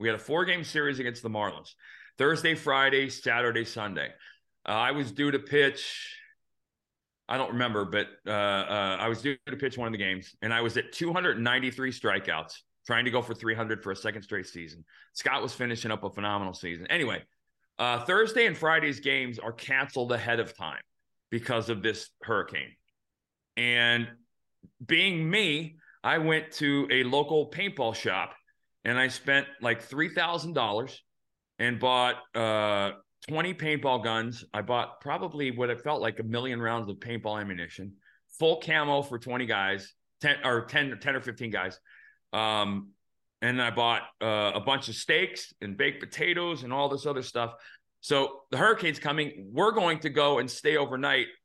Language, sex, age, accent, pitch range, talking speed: English, male, 40-59, American, 115-145 Hz, 170 wpm